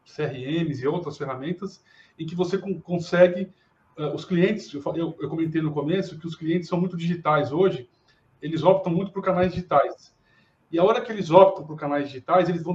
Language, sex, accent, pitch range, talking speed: Portuguese, male, Brazilian, 145-185 Hz, 185 wpm